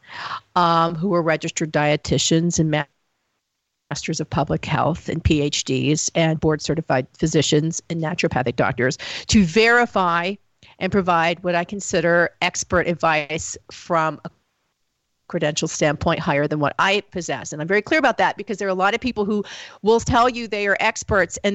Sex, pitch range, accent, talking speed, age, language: female, 160-200 Hz, American, 160 wpm, 50-69, English